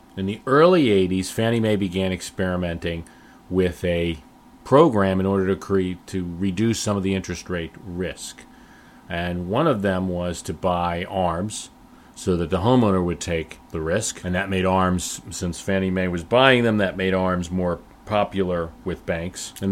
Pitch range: 90-105 Hz